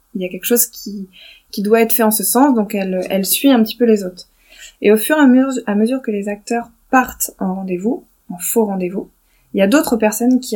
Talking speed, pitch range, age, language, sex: 255 wpm, 195-235 Hz, 20-39, French, female